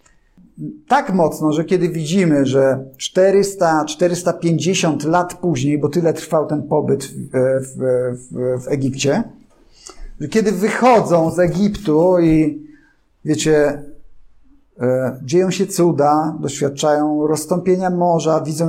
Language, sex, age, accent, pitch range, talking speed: Polish, male, 50-69, native, 140-185 Hz, 105 wpm